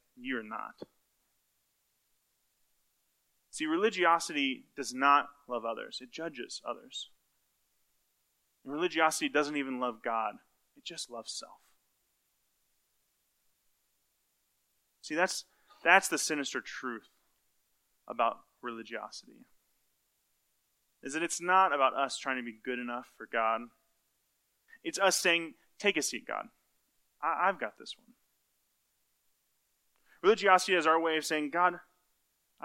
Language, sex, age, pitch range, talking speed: English, male, 20-39, 135-175 Hz, 110 wpm